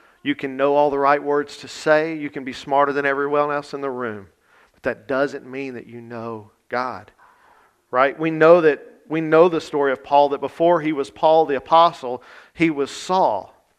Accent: American